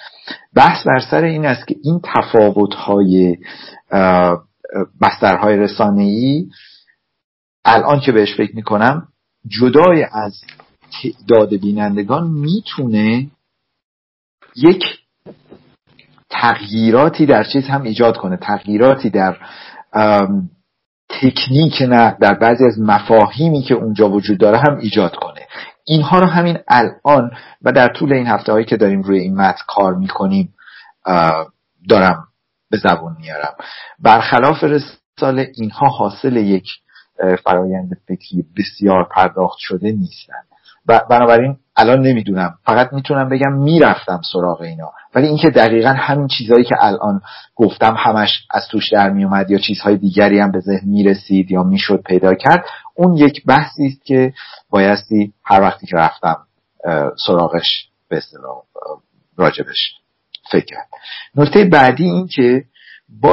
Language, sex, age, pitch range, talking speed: Persian, male, 50-69, 100-140 Hz, 120 wpm